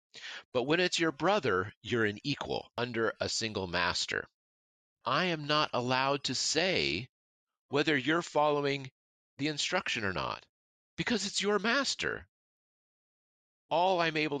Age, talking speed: 40-59, 135 wpm